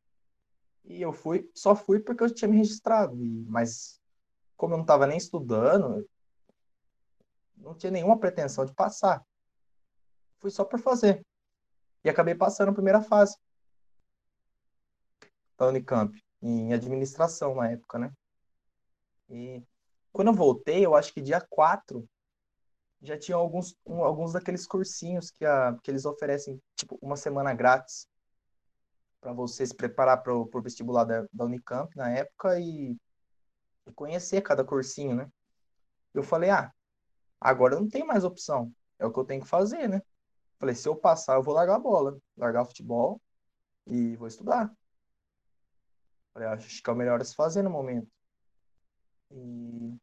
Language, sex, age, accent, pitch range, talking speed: Portuguese, male, 20-39, Brazilian, 120-185 Hz, 150 wpm